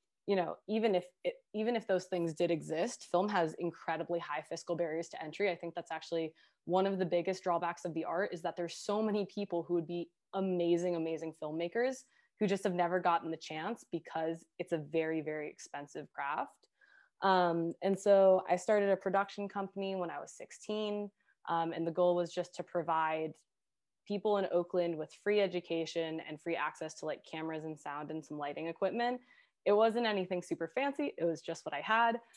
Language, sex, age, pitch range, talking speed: English, female, 20-39, 170-200 Hz, 195 wpm